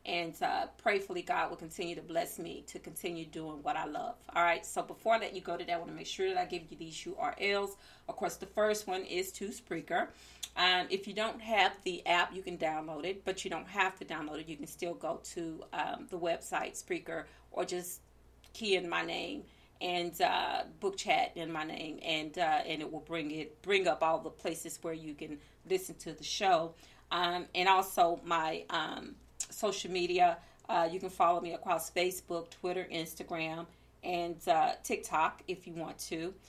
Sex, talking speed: female, 205 wpm